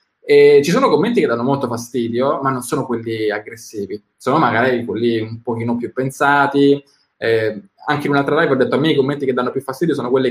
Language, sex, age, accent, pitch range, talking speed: Italian, male, 20-39, native, 120-140 Hz, 210 wpm